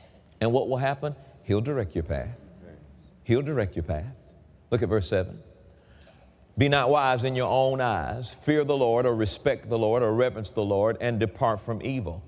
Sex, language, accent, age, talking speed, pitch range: male, English, American, 40-59, 185 wpm, 100-140 Hz